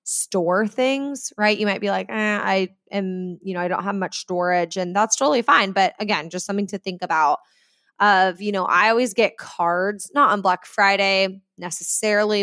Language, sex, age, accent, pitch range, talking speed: English, female, 20-39, American, 190-245 Hz, 195 wpm